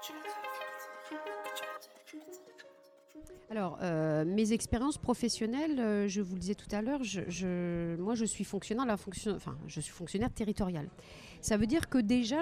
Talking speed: 150 wpm